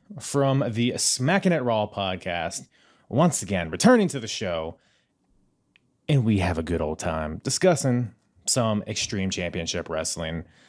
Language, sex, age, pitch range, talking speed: English, male, 30-49, 100-140 Hz, 135 wpm